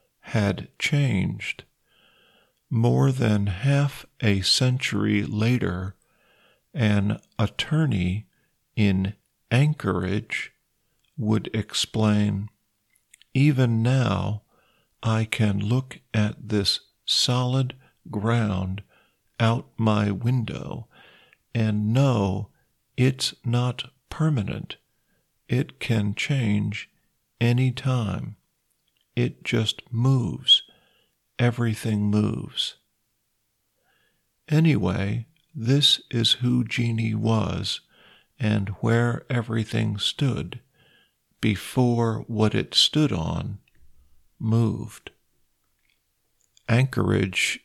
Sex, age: male, 50-69